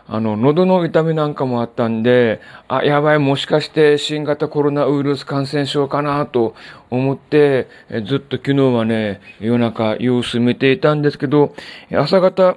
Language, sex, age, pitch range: Japanese, male, 40-59, 115-150 Hz